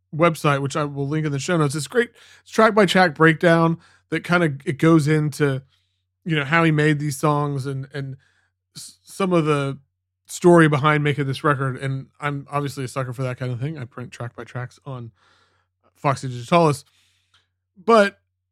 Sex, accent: male, American